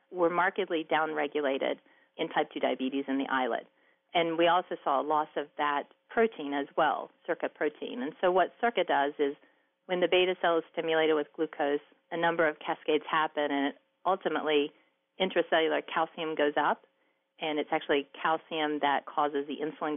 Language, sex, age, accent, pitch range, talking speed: English, female, 40-59, American, 150-170 Hz, 170 wpm